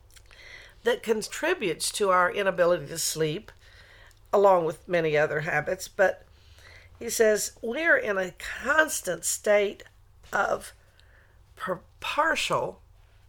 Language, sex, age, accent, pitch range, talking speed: English, female, 50-69, American, 155-230 Hz, 100 wpm